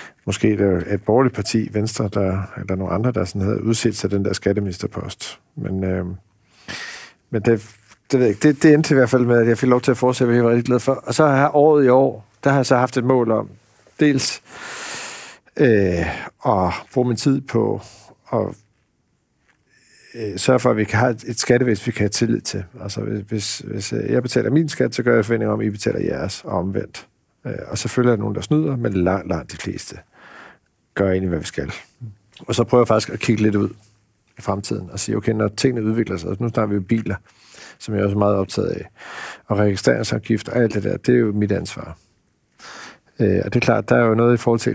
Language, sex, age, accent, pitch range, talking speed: Danish, male, 50-69, native, 100-125 Hz, 230 wpm